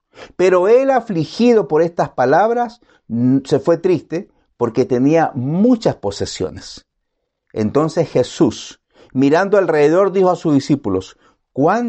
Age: 50-69